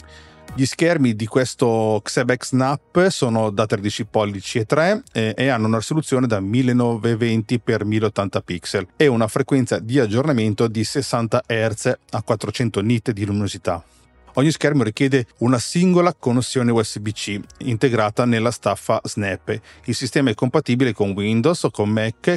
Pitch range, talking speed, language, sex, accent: 105-135 Hz, 140 wpm, Italian, male, native